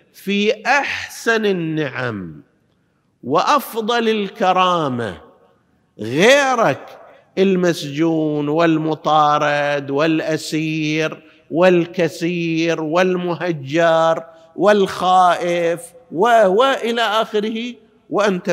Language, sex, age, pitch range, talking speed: Arabic, male, 50-69, 130-180 Hz, 50 wpm